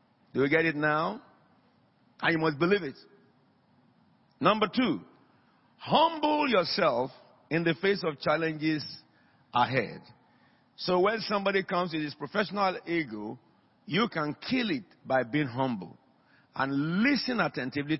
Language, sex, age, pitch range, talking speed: English, male, 50-69, 135-170 Hz, 125 wpm